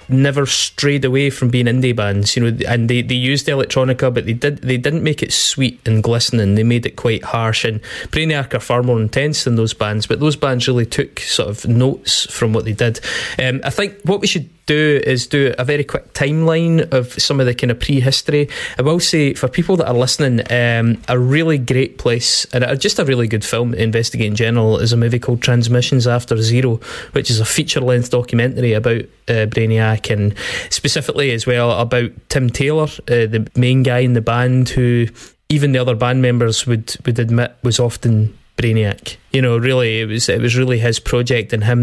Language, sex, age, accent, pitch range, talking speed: English, male, 20-39, British, 115-130 Hz, 215 wpm